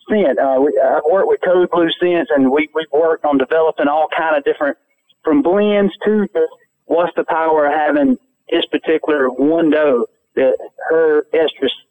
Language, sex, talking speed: English, male, 175 wpm